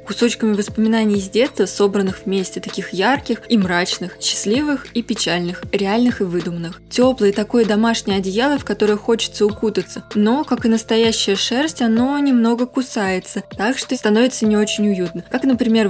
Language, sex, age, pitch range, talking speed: Russian, female, 20-39, 200-240 Hz, 150 wpm